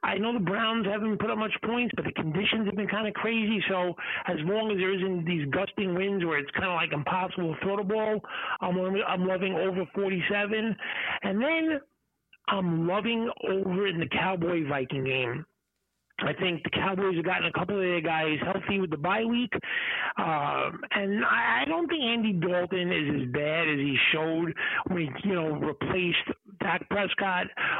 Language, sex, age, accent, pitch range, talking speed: English, male, 50-69, American, 165-205 Hz, 185 wpm